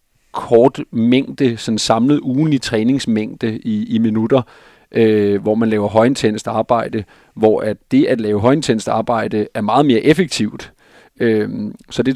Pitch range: 105-125 Hz